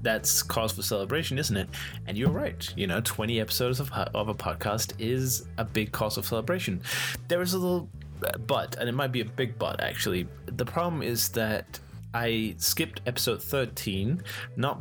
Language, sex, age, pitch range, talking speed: English, male, 20-39, 100-125 Hz, 180 wpm